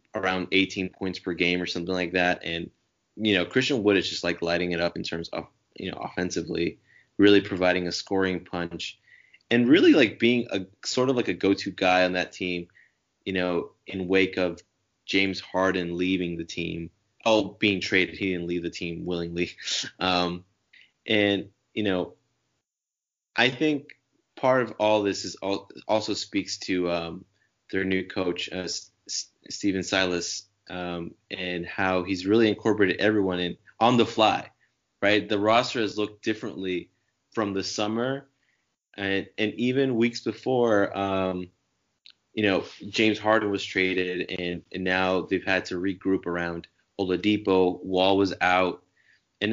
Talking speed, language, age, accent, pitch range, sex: 160 wpm, English, 20-39, American, 90-105 Hz, male